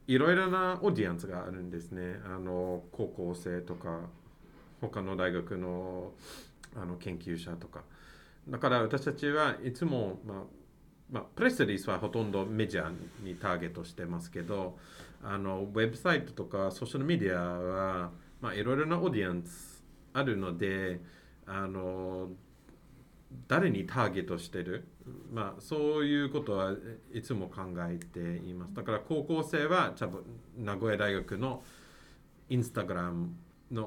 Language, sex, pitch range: Japanese, male, 90-115 Hz